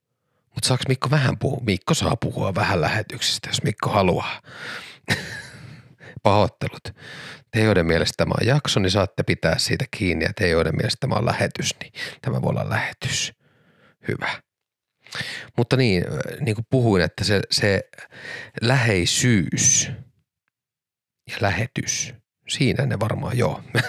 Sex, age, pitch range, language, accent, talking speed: male, 30-49, 95-130 Hz, Finnish, native, 130 wpm